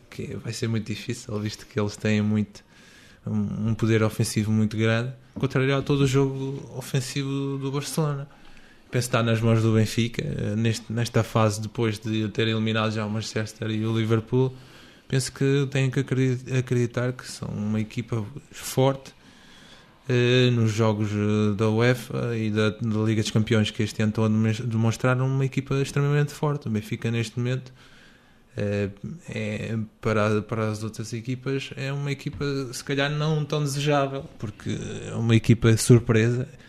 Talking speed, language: 150 wpm, Portuguese